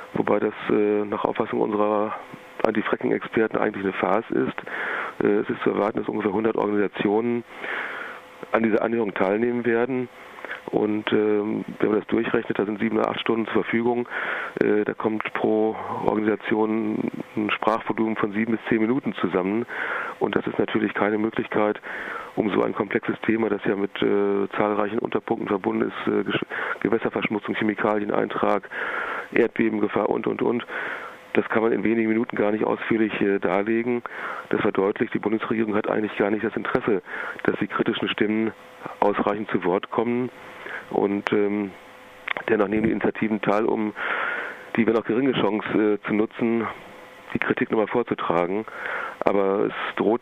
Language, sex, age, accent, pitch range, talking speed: German, male, 40-59, German, 105-115 Hz, 155 wpm